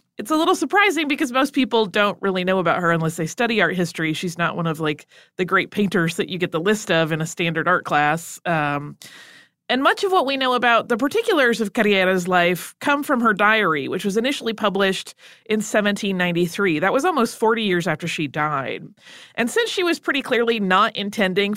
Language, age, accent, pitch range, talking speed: English, 30-49, American, 175-235 Hz, 210 wpm